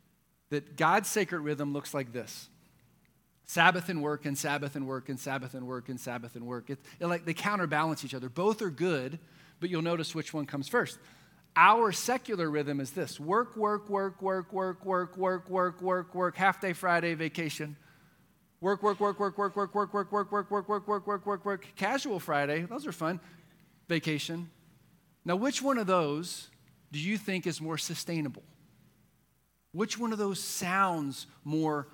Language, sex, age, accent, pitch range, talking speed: English, male, 40-59, American, 145-185 Hz, 180 wpm